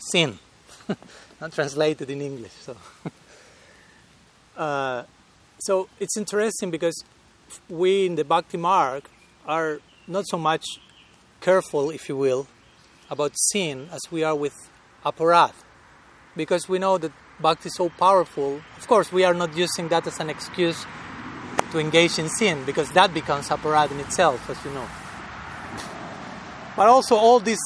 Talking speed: 145 wpm